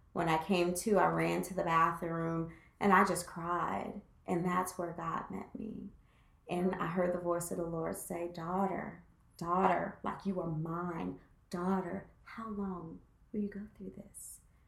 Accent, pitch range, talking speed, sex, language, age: American, 175-230 Hz, 170 wpm, female, English, 30-49